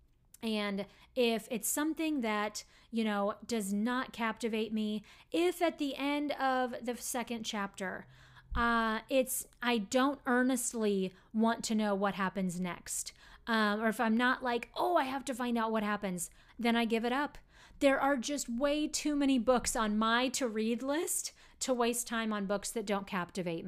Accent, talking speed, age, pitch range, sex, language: American, 175 wpm, 30-49, 210-275 Hz, female, English